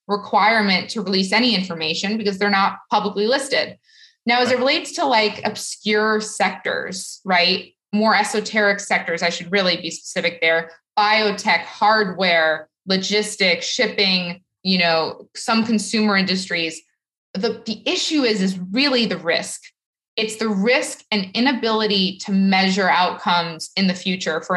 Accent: American